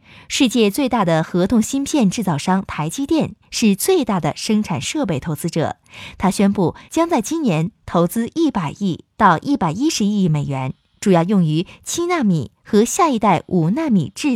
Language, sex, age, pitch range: Chinese, female, 20-39, 170-255 Hz